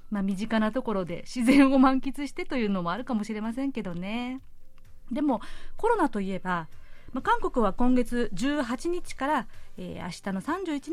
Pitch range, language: 200-275 Hz, Japanese